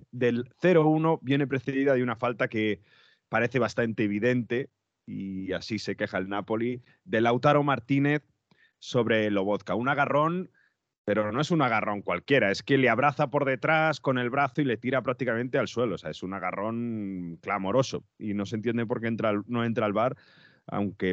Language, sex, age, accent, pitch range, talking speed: Spanish, male, 30-49, Spanish, 105-135 Hz, 180 wpm